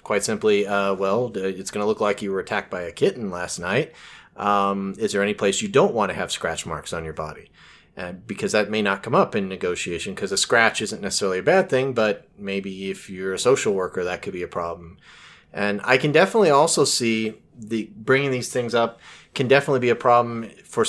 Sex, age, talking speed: male, 30-49, 225 wpm